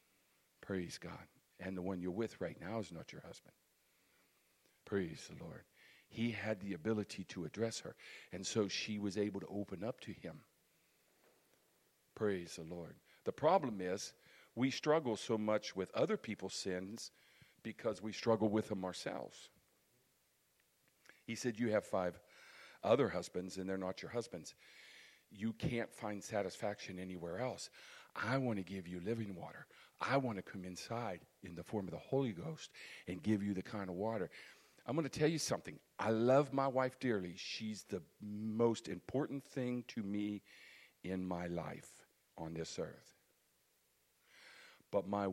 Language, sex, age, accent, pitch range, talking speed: English, male, 50-69, American, 95-120 Hz, 165 wpm